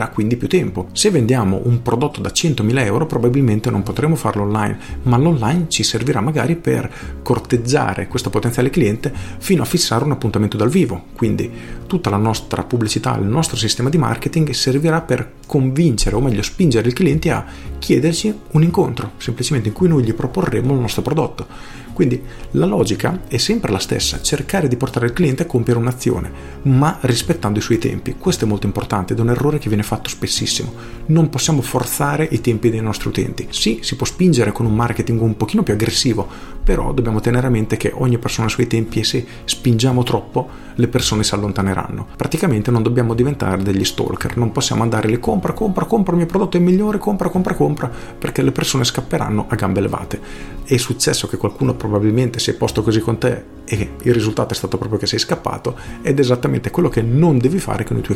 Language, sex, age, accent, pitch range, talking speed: Italian, male, 40-59, native, 110-145 Hz, 200 wpm